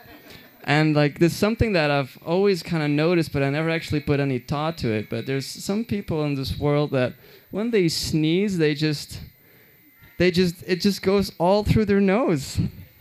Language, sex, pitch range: English, male, 150-205 Hz